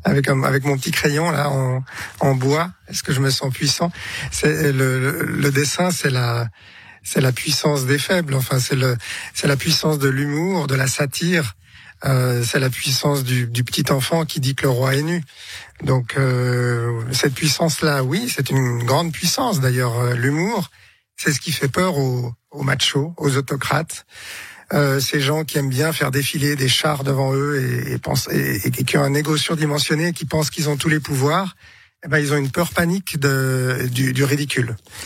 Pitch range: 130-155 Hz